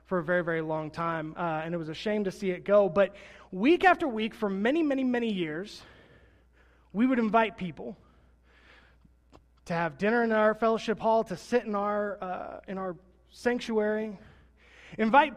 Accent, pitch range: American, 155-230 Hz